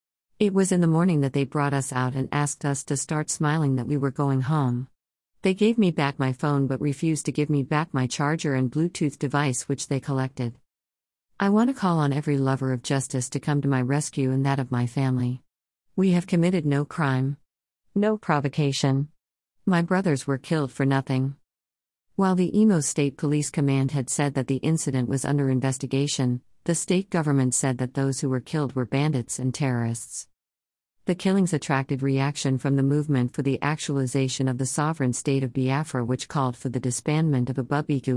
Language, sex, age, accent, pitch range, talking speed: English, female, 50-69, American, 130-150 Hz, 195 wpm